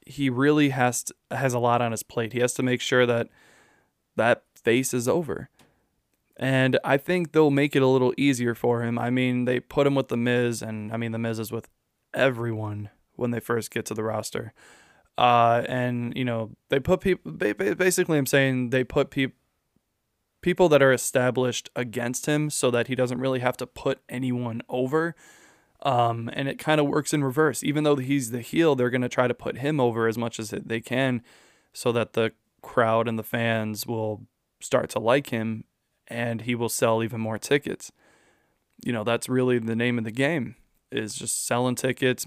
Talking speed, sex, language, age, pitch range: 200 wpm, male, English, 20-39, 120-135 Hz